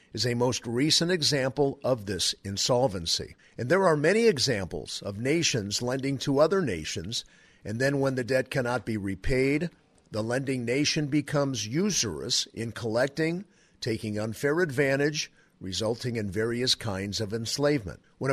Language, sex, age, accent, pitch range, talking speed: English, male, 50-69, American, 115-150 Hz, 145 wpm